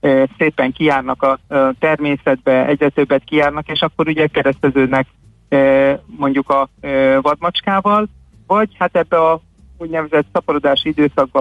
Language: Hungarian